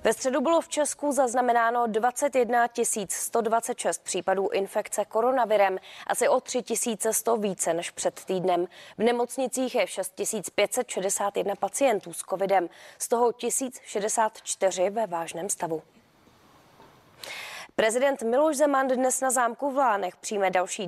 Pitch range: 195-250 Hz